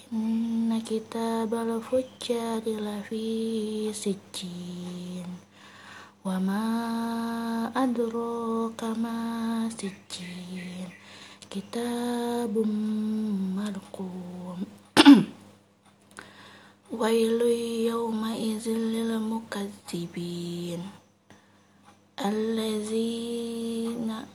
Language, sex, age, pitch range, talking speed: Indonesian, female, 20-39, 185-225 Hz, 40 wpm